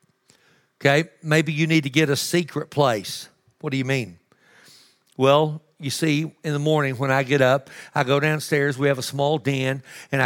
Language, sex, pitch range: English, male, 135-165 Hz